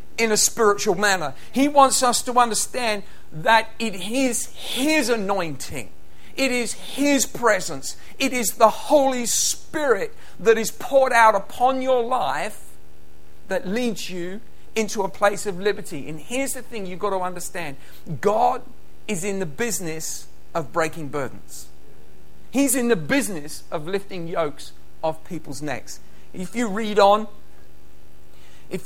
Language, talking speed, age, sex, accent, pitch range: English, 145 wpm, 50-69, male, British, 145-230 Hz